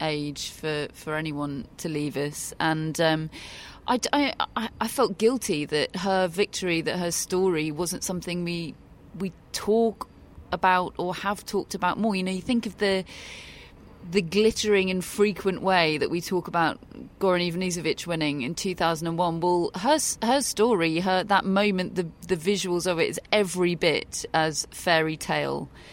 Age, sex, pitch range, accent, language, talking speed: 30-49, female, 160-195 Hz, British, English, 165 wpm